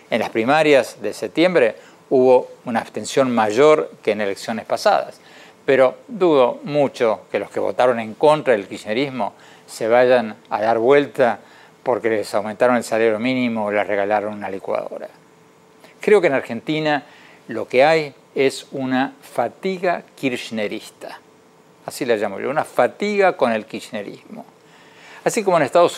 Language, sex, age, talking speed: Spanish, male, 50-69, 150 wpm